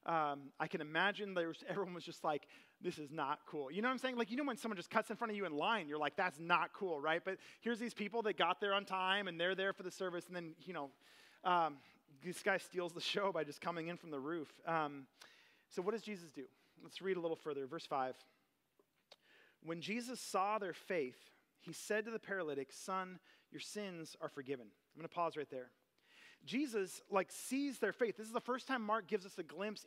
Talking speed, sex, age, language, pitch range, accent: 235 wpm, male, 30-49, English, 165-215 Hz, American